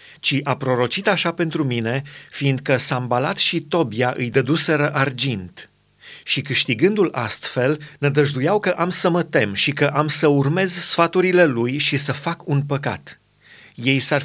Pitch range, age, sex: 130-160 Hz, 30-49, male